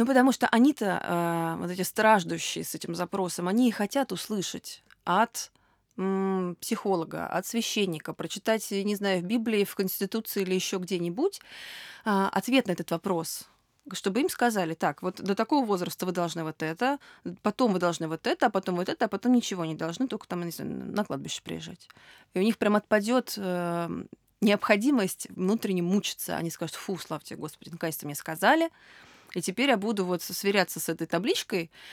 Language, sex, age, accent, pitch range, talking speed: Russian, female, 20-39, native, 170-220 Hz, 180 wpm